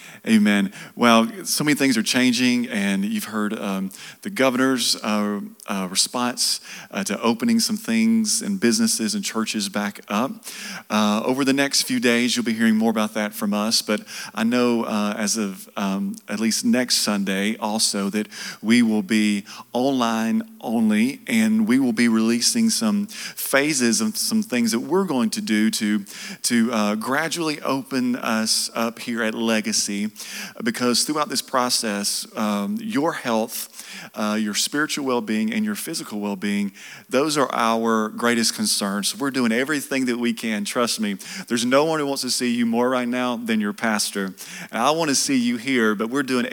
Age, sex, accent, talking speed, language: 40-59, male, American, 175 wpm, English